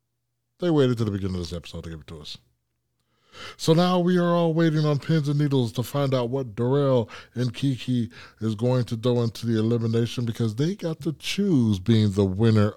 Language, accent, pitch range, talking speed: English, American, 95-125 Hz, 210 wpm